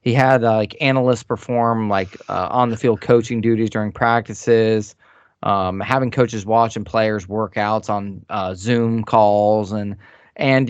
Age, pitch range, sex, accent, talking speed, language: 20-39, 105-125 Hz, male, American, 155 wpm, English